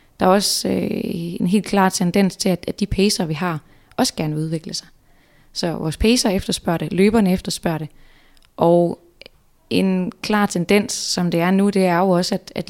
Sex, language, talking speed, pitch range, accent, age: female, Danish, 195 wpm, 170-200 Hz, native, 20-39